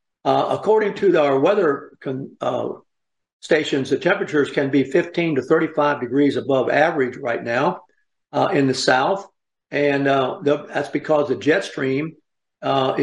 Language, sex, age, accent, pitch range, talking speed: English, male, 60-79, American, 135-155 Hz, 145 wpm